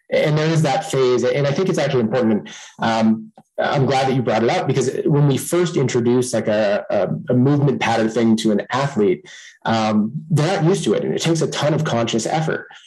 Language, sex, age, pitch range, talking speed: English, male, 20-39, 110-140 Hz, 225 wpm